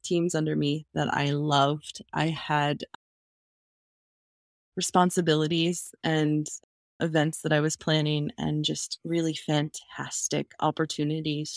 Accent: American